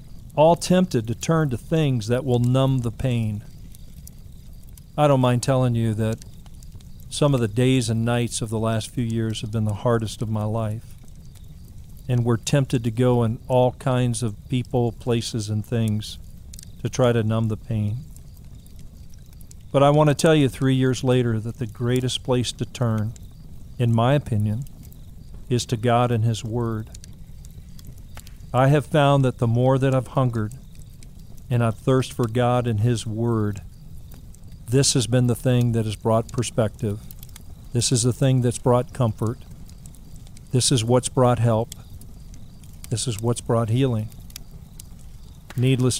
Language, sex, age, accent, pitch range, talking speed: English, male, 50-69, American, 110-125 Hz, 160 wpm